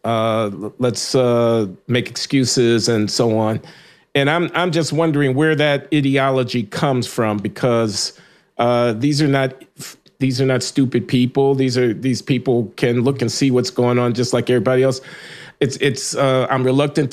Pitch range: 120-140 Hz